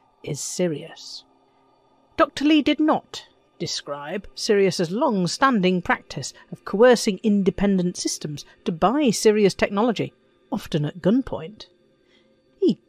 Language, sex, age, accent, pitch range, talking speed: English, female, 50-69, British, 170-250 Hz, 100 wpm